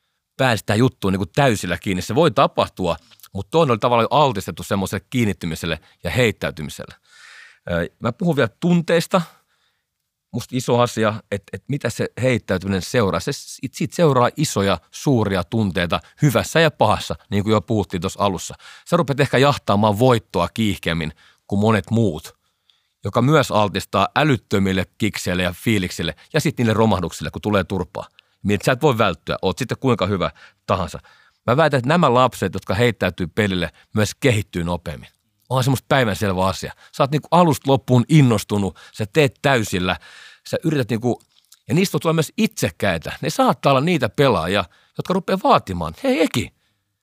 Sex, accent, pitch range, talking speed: male, native, 95-145 Hz, 155 wpm